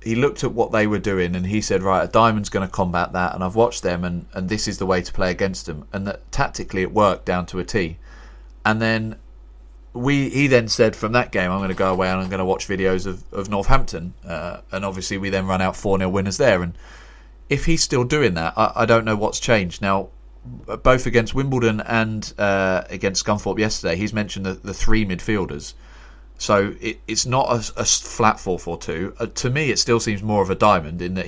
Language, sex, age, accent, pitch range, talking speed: English, male, 30-49, British, 90-110 Hz, 230 wpm